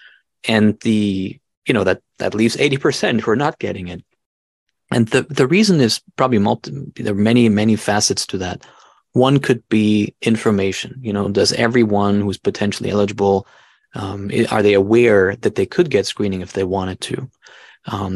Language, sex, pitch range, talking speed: English, male, 100-115 Hz, 180 wpm